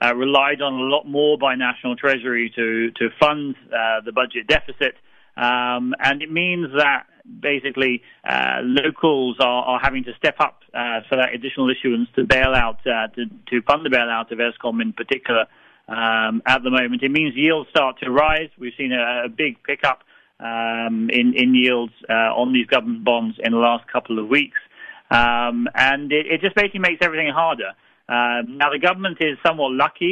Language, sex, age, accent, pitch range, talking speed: English, male, 40-59, British, 120-145 Hz, 185 wpm